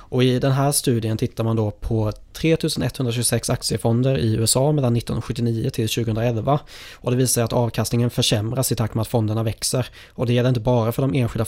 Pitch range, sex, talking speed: 115-130 Hz, male, 195 wpm